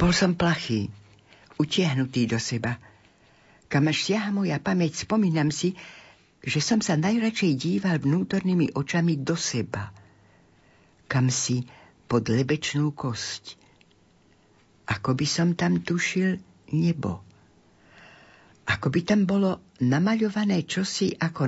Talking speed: 110 wpm